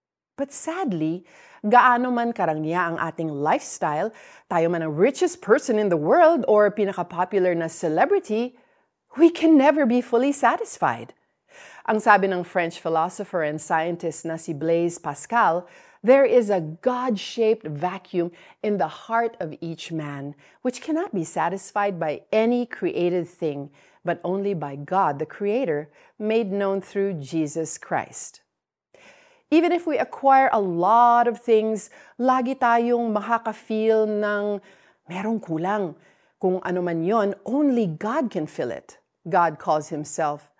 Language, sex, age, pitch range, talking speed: Filipino, female, 40-59, 165-225 Hz, 135 wpm